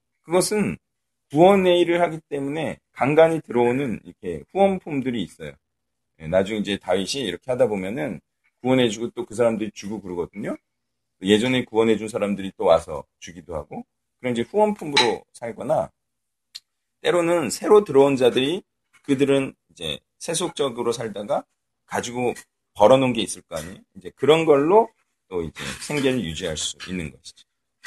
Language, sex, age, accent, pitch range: Korean, male, 40-59, native, 90-145 Hz